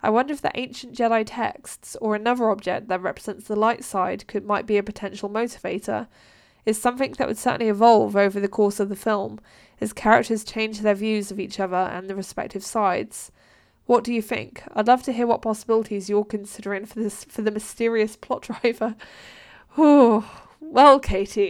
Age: 10-29